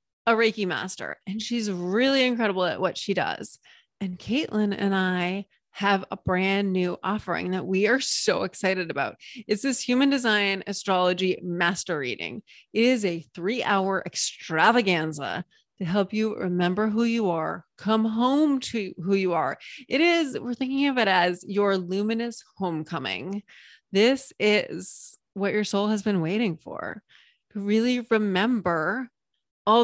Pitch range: 190-235 Hz